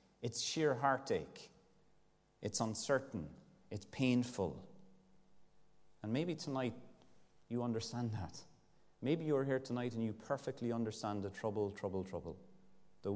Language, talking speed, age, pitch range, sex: English, 120 wpm, 30-49, 95-120 Hz, male